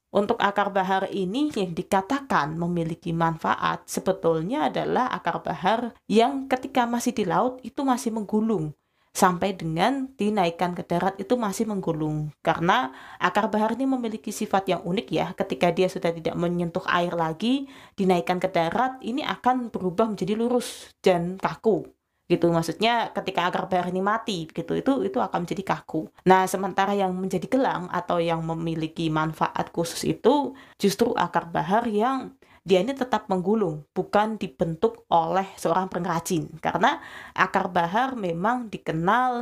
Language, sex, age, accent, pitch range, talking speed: Indonesian, female, 20-39, native, 170-215 Hz, 145 wpm